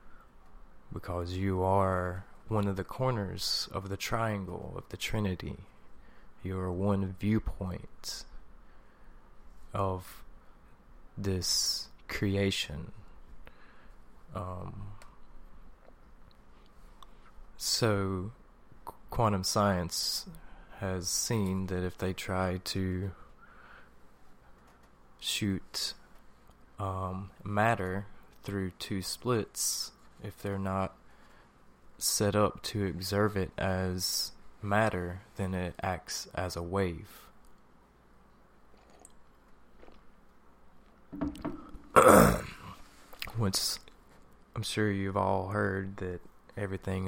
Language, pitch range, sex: English, 90-100 Hz, male